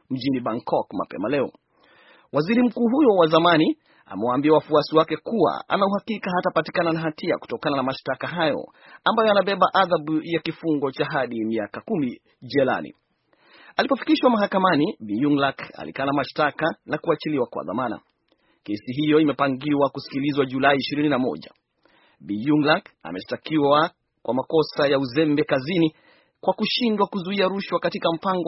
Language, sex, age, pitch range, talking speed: Swahili, male, 30-49, 140-170 Hz, 125 wpm